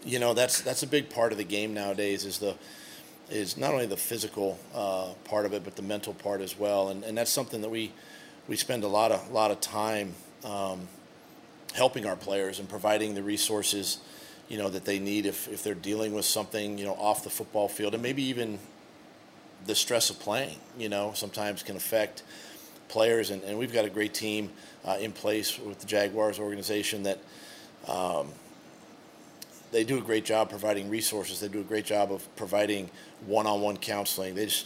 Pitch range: 100-110 Hz